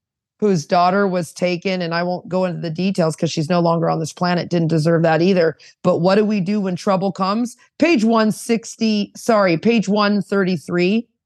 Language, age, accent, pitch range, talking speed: English, 40-59, American, 170-200 Hz, 185 wpm